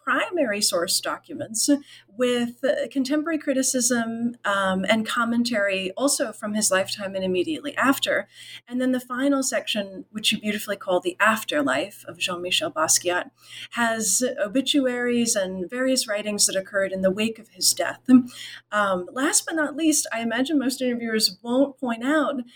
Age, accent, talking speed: 40-59, American, 145 wpm